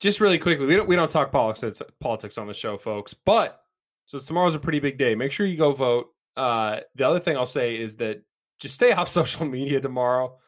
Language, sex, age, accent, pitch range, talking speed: English, male, 20-39, American, 115-150 Hz, 230 wpm